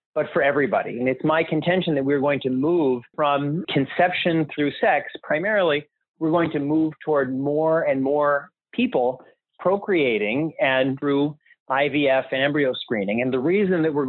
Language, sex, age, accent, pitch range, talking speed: English, male, 40-59, American, 130-155 Hz, 160 wpm